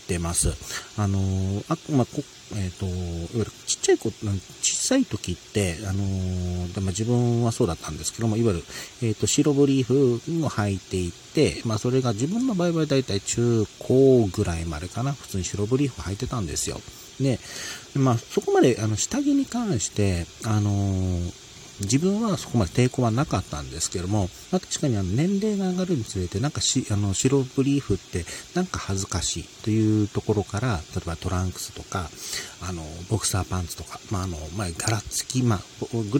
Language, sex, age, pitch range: Japanese, male, 40-59, 95-130 Hz